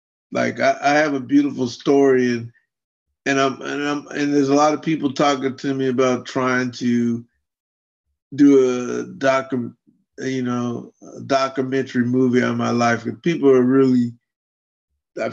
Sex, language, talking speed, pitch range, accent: male, English, 155 wpm, 115-135 Hz, American